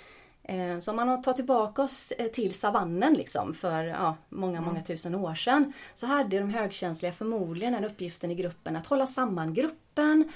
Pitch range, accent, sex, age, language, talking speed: 175-255 Hz, native, female, 30-49, Swedish, 170 wpm